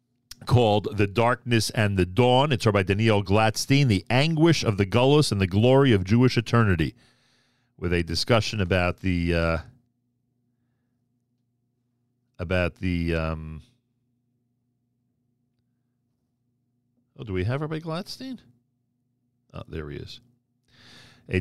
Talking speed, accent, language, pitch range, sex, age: 115 wpm, American, English, 105-125 Hz, male, 40-59